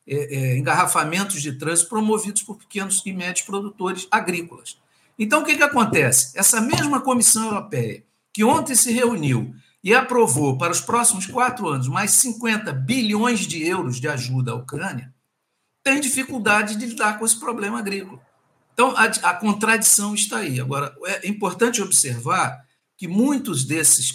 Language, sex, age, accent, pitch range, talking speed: Portuguese, male, 60-79, Brazilian, 135-220 Hz, 150 wpm